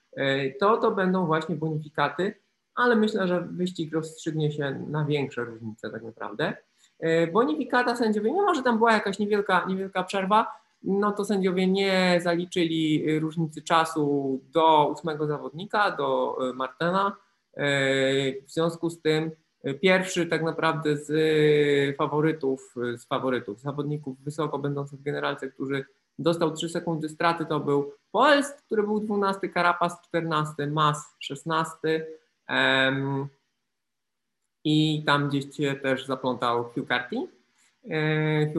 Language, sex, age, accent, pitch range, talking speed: Polish, male, 20-39, native, 140-175 Hz, 120 wpm